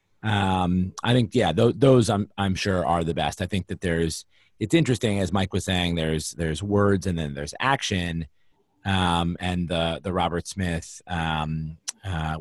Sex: male